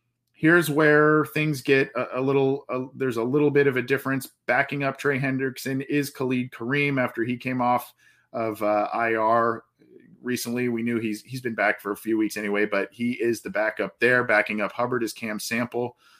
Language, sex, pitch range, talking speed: English, male, 115-130 Hz, 195 wpm